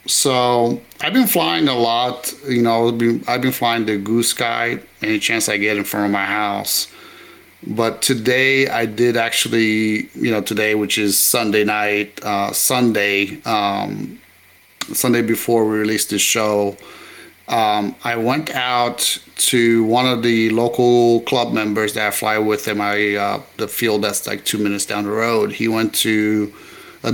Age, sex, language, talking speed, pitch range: 30-49, male, English, 165 wpm, 105-120 Hz